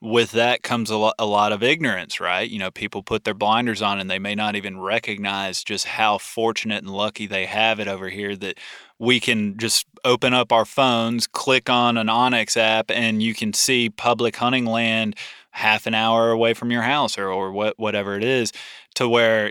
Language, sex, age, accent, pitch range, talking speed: English, male, 20-39, American, 110-125 Hz, 200 wpm